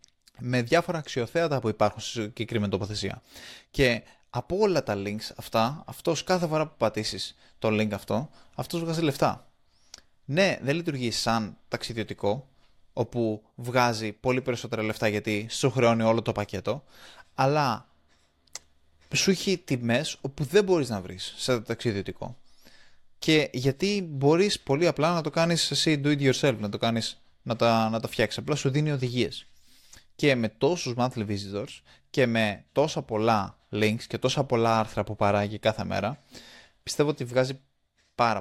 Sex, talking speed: male, 150 wpm